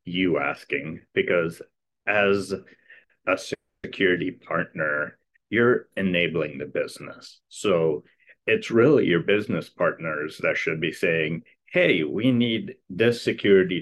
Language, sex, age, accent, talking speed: English, male, 40-59, American, 115 wpm